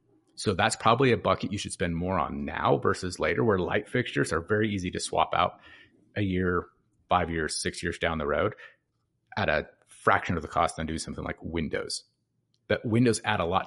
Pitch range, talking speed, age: 90-115 Hz, 205 wpm, 30-49